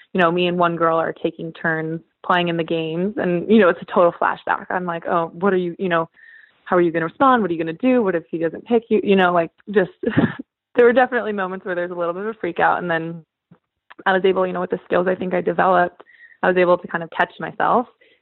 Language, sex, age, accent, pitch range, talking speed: English, female, 20-39, American, 165-195 Hz, 280 wpm